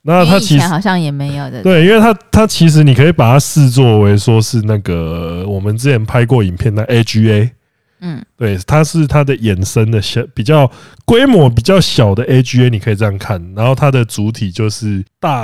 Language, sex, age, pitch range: Chinese, male, 20-39, 105-140 Hz